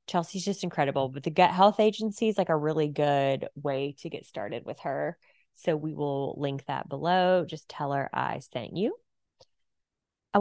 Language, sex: English, female